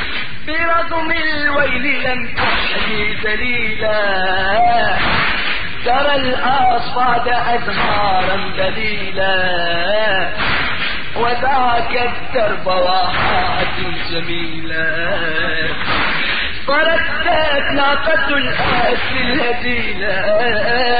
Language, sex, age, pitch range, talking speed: Arabic, male, 40-59, 205-285 Hz, 50 wpm